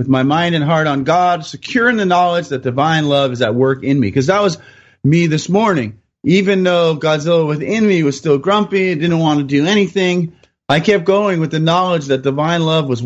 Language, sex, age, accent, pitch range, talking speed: English, male, 30-49, American, 135-180 Hz, 215 wpm